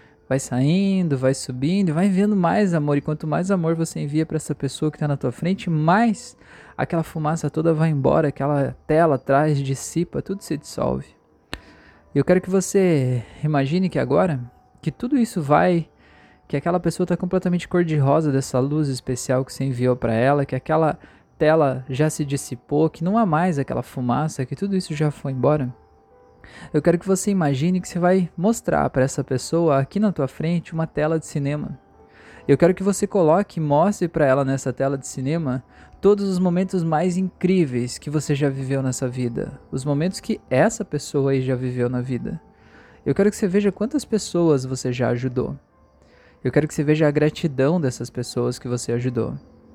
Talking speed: 190 wpm